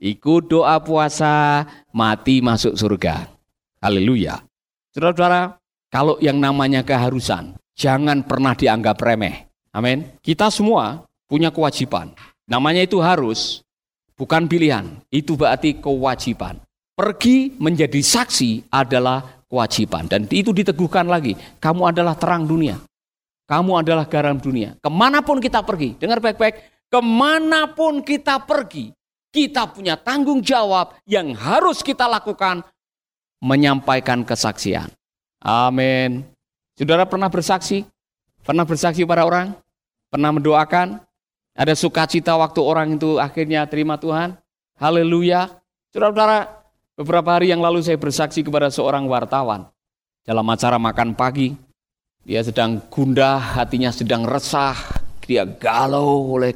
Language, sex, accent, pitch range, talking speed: Indonesian, male, native, 130-180 Hz, 110 wpm